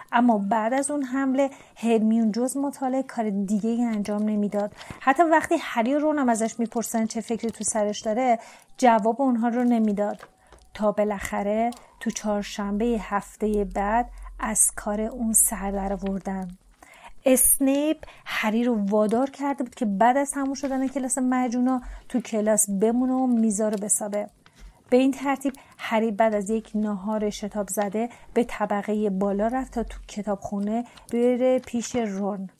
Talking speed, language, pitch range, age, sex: 145 wpm, Persian, 210-255 Hz, 40-59, female